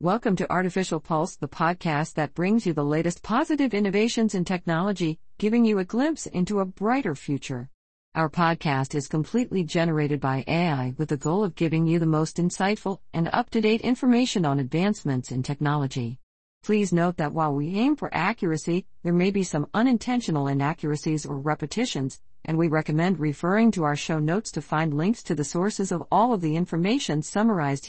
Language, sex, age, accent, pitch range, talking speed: English, female, 50-69, American, 145-195 Hz, 175 wpm